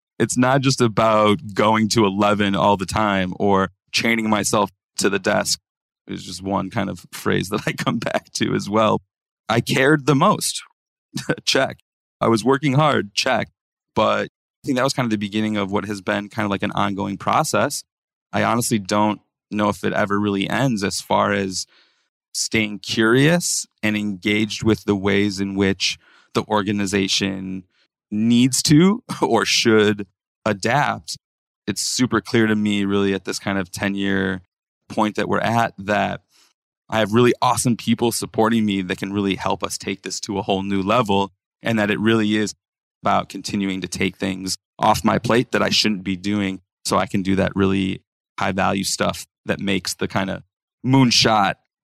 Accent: American